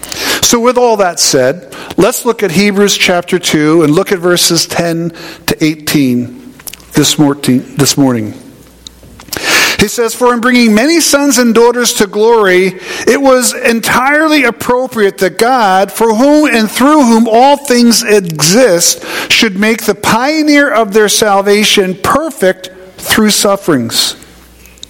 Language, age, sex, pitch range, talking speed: English, 50-69, male, 190-240 Hz, 135 wpm